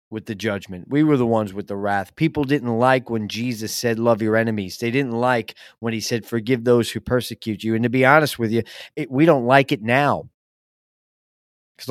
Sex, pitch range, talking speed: male, 105-130 Hz, 215 wpm